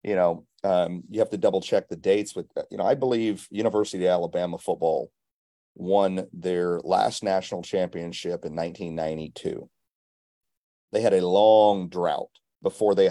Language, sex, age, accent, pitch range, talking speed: English, male, 40-59, American, 90-105 Hz, 150 wpm